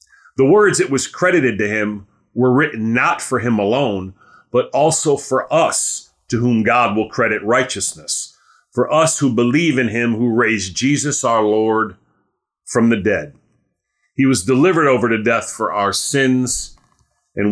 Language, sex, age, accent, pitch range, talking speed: English, male, 40-59, American, 110-140 Hz, 160 wpm